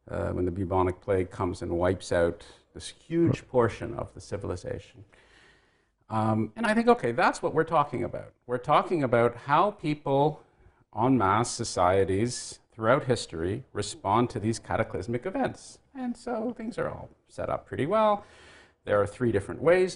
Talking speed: 160 wpm